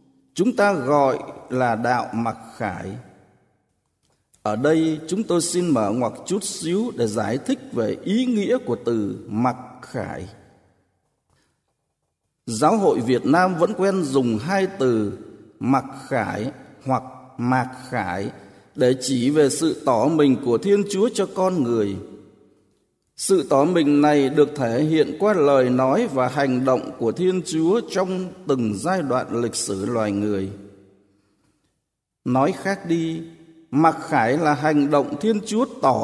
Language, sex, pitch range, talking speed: Vietnamese, male, 120-180 Hz, 145 wpm